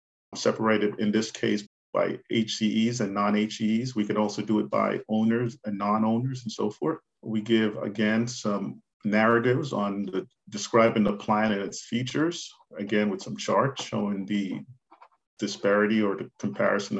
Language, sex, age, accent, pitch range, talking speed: English, male, 40-59, American, 105-115 Hz, 150 wpm